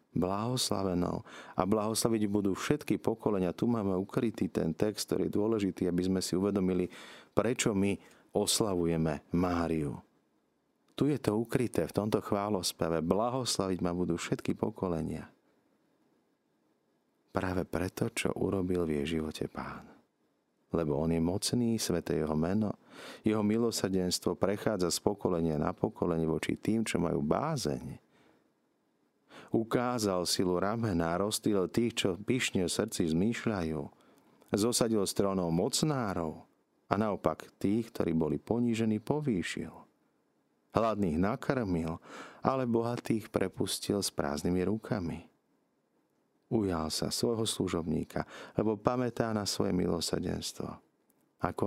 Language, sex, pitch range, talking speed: Slovak, male, 85-110 Hz, 115 wpm